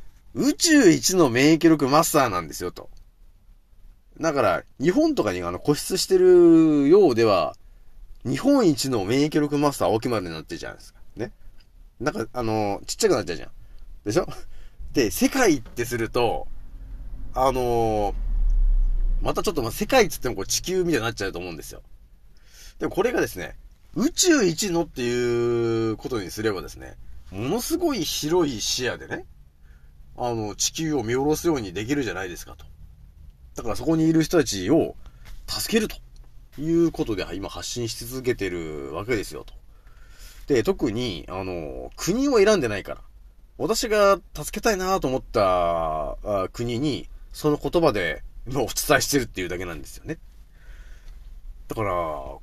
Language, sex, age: Japanese, male, 40-59